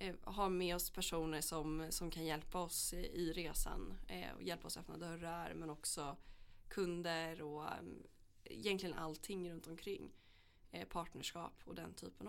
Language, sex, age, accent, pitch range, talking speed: English, female, 20-39, Swedish, 145-170 Hz, 140 wpm